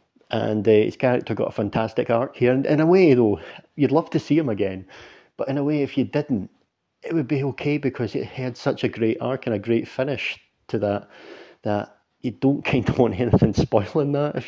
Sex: male